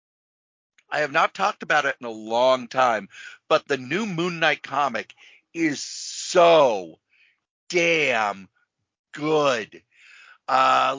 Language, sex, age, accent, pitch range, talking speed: English, male, 50-69, American, 125-165 Hz, 115 wpm